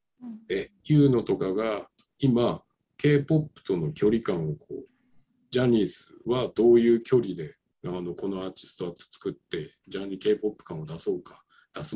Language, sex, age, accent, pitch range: Japanese, male, 50-69, native, 95-145 Hz